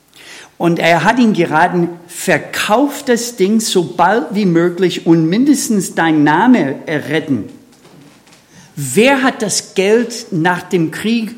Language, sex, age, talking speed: German, male, 50-69, 125 wpm